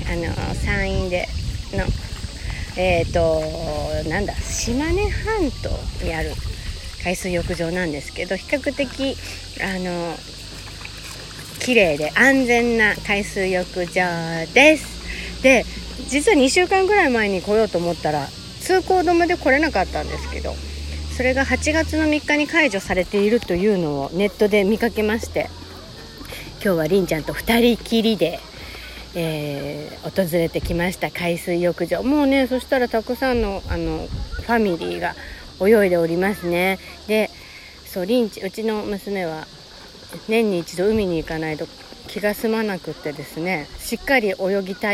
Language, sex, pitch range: Japanese, female, 160-225 Hz